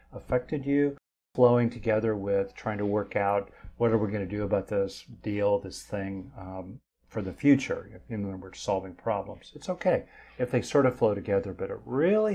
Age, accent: 50-69, American